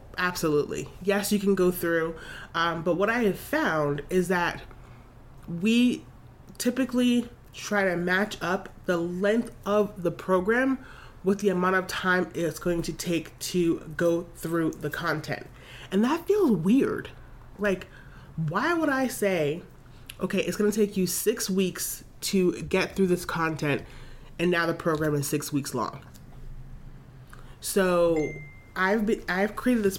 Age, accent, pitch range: 30-49, American, 155-190 Hz